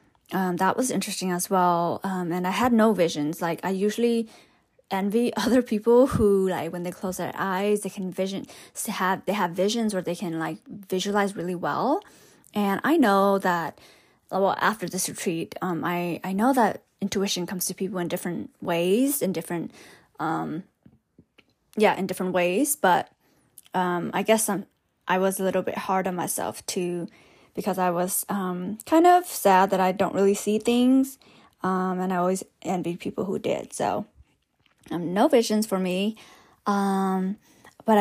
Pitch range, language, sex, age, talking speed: 180-210 Hz, English, female, 20-39, 175 wpm